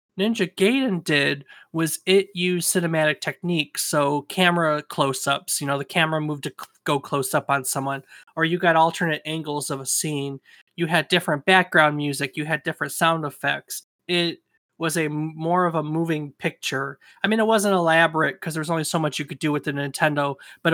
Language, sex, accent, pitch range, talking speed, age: English, male, American, 140-170 Hz, 195 wpm, 20-39